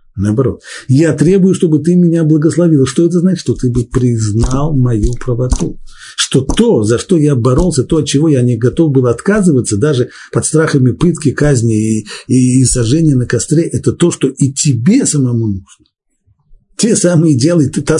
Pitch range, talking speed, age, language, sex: 110-155 Hz, 175 wpm, 50-69, Russian, male